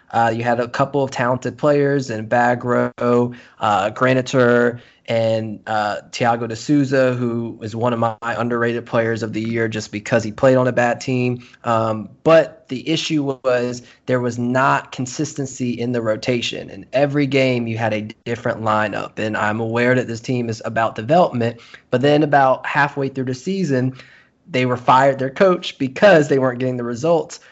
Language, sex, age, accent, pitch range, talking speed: English, male, 20-39, American, 110-130 Hz, 180 wpm